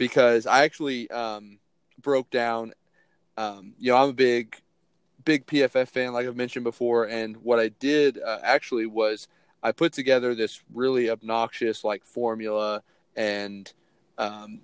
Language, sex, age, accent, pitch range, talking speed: English, male, 30-49, American, 110-125 Hz, 150 wpm